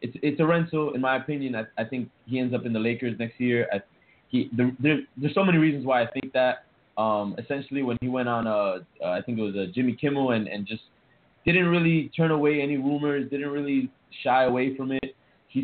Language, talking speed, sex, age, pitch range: English, 235 wpm, male, 20-39, 115-145 Hz